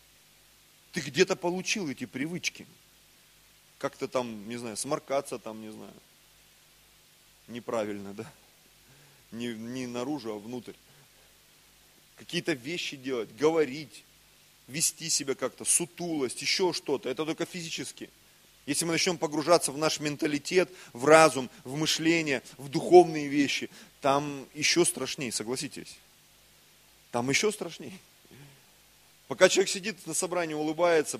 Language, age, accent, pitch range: Russian, 30-49, native, 130-180 Hz